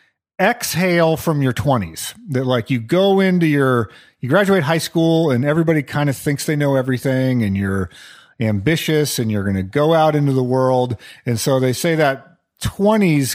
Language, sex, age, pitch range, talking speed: English, male, 40-59, 120-165 Hz, 180 wpm